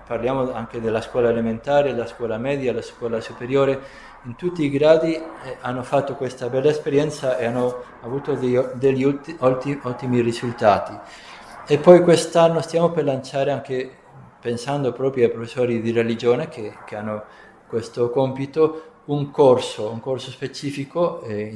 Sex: male